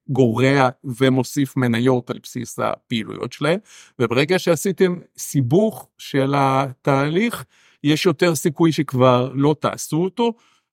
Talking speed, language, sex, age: 105 wpm, Hebrew, male, 50-69